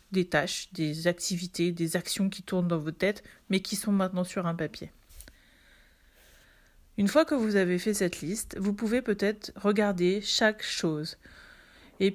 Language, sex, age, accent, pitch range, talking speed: French, female, 40-59, French, 180-235 Hz, 165 wpm